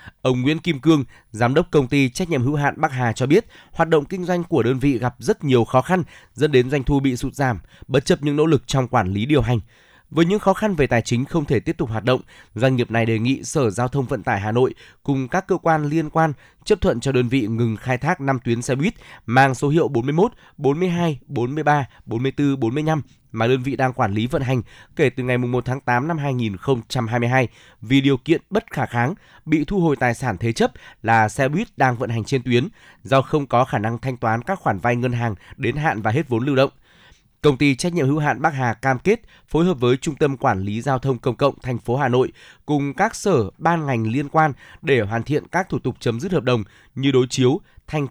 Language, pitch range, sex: Vietnamese, 120-155 Hz, male